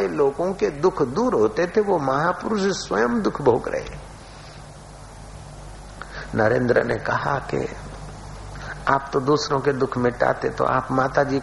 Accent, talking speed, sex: native, 130 wpm, male